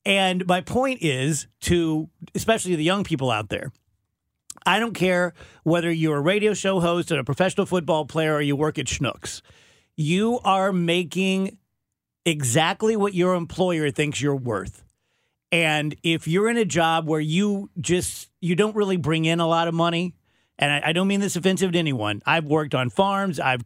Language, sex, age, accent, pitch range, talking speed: English, male, 40-59, American, 145-190 Hz, 185 wpm